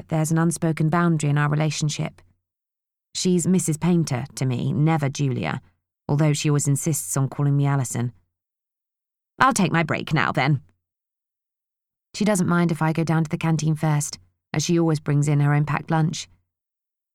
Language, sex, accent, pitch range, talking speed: English, female, British, 145-165 Hz, 170 wpm